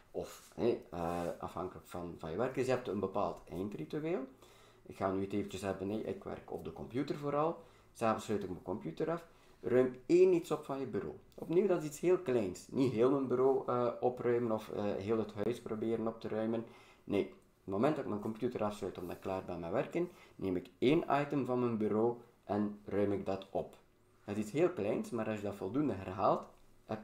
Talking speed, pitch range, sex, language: 220 wpm, 100-135 Hz, male, Dutch